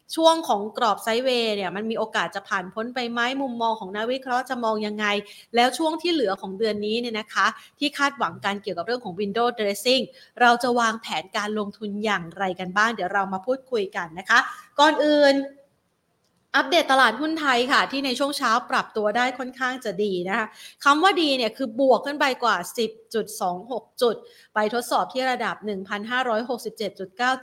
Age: 30-49